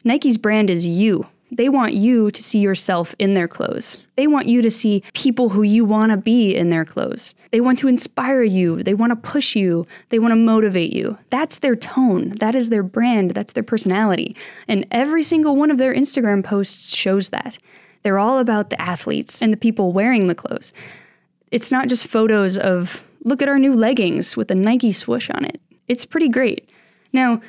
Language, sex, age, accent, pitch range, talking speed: English, female, 10-29, American, 195-250 Hz, 205 wpm